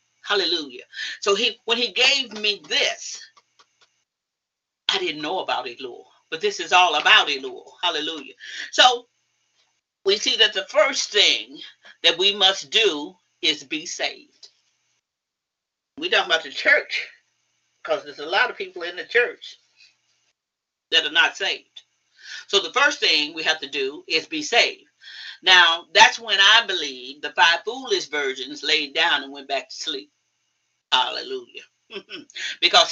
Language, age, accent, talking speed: English, 40-59, American, 150 wpm